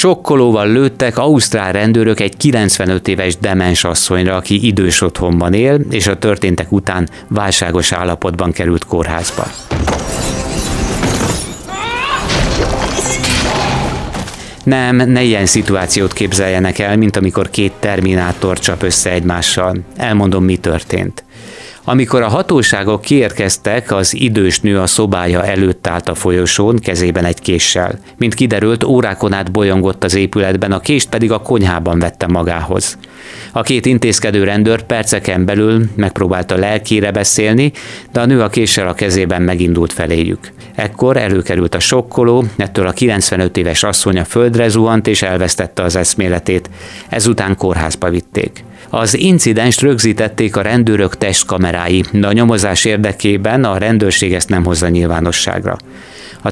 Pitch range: 90-115 Hz